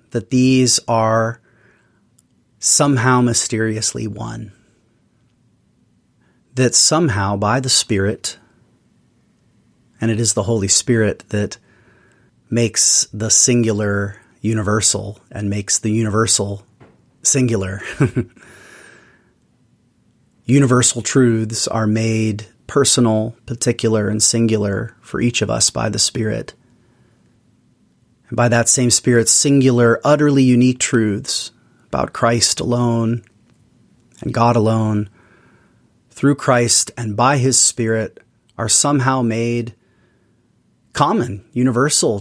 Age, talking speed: 30-49, 95 wpm